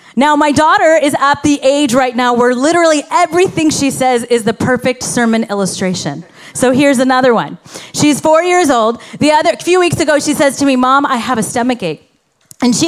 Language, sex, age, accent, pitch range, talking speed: English, female, 30-49, American, 245-330 Hz, 205 wpm